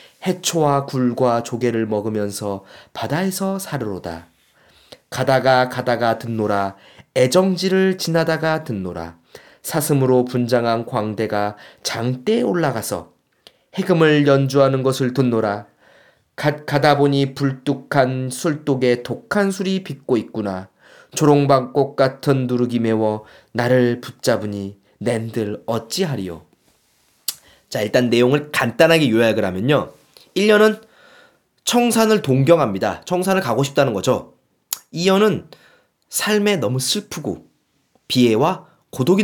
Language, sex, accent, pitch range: Korean, male, native, 115-160 Hz